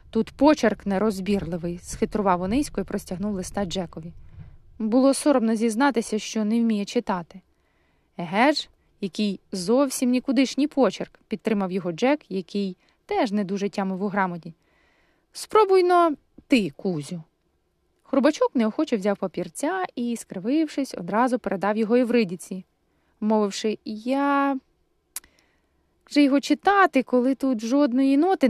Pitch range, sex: 195-265 Hz, female